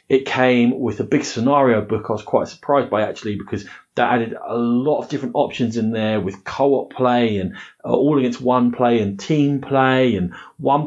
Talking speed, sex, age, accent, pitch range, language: 200 wpm, male, 30-49, British, 105-135 Hz, English